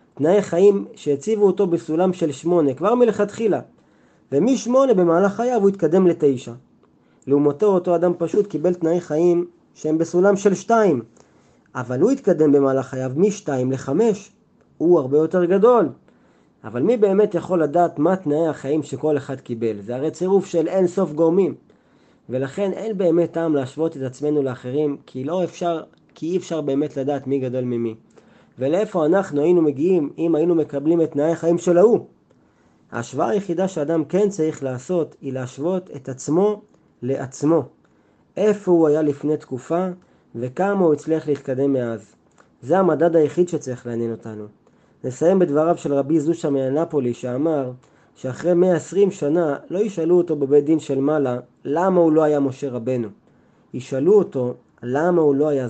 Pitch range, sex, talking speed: 135-180 Hz, male, 155 wpm